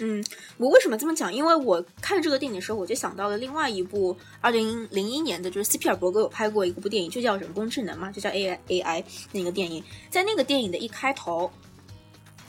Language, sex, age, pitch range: Chinese, female, 20-39, 190-285 Hz